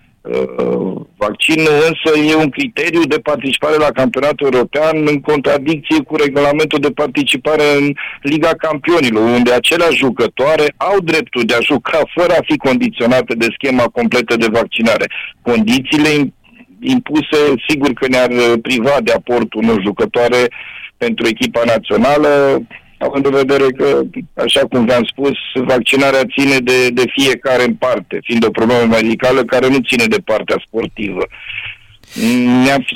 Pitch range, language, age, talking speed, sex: 120-145 Hz, Romanian, 50-69, 135 wpm, male